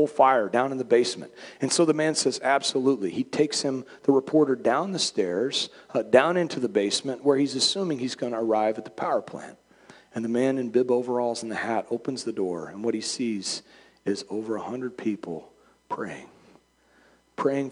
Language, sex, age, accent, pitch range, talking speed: English, male, 40-59, American, 100-130 Hz, 195 wpm